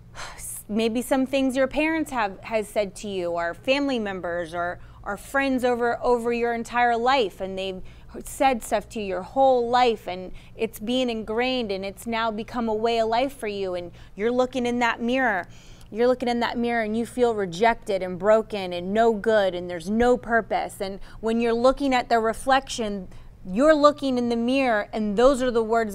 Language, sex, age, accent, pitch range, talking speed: English, female, 20-39, American, 200-250 Hz, 195 wpm